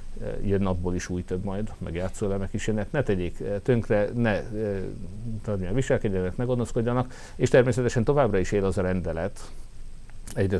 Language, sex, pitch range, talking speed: Hungarian, male, 90-110 Hz, 145 wpm